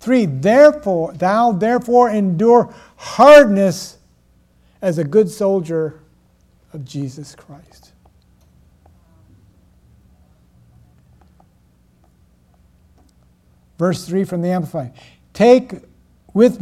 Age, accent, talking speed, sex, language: 60-79, American, 70 wpm, male, English